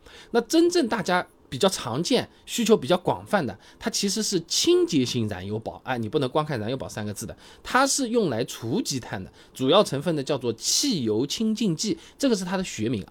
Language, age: Chinese, 20-39